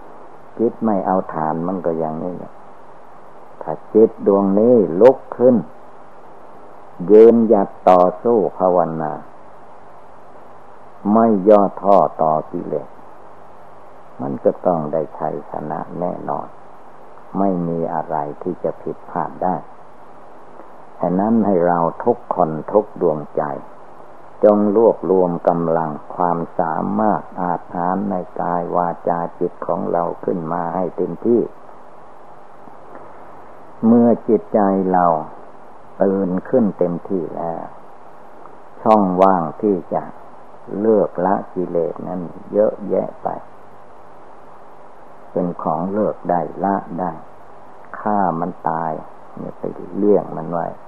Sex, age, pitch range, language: male, 60-79, 85-100 Hz, Thai